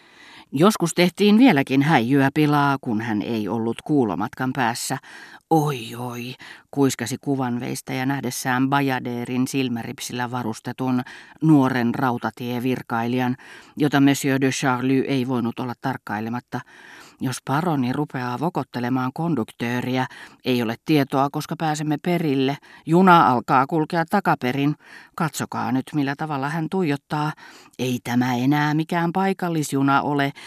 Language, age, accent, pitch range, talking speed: Finnish, 40-59, native, 125-150 Hz, 115 wpm